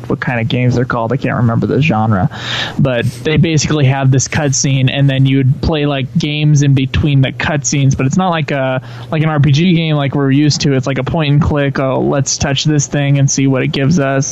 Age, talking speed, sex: 20-39, 230 wpm, male